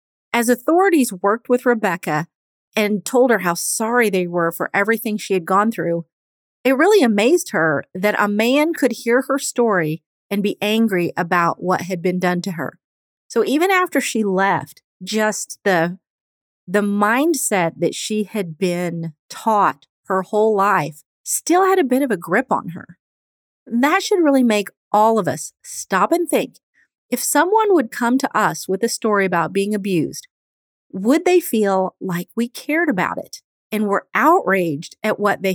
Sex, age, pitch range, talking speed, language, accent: female, 40-59, 180-250 Hz, 170 wpm, English, American